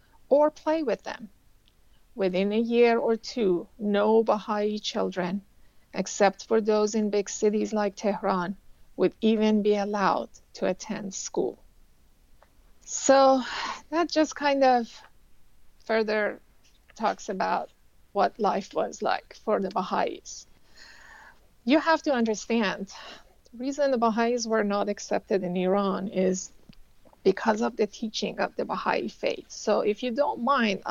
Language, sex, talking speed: English, female, 135 wpm